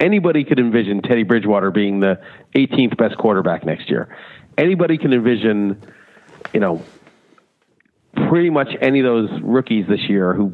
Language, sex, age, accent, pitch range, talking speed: English, male, 40-59, American, 105-135 Hz, 150 wpm